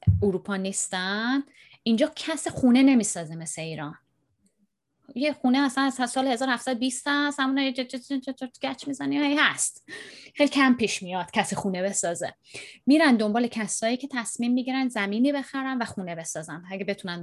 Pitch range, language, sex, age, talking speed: 185-260 Hz, Persian, female, 20-39, 155 wpm